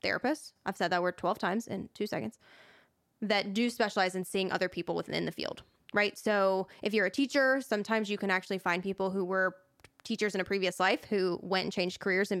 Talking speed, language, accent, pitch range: 220 wpm, English, American, 185-225 Hz